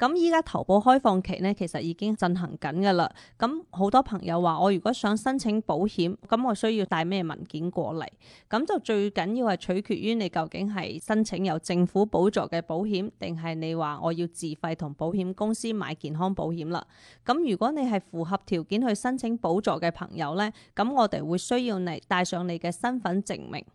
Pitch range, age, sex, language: 170-220 Hz, 20-39, female, Chinese